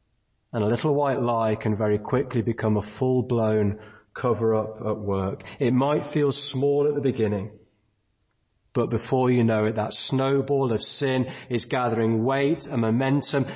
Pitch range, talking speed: 110-135 Hz, 155 wpm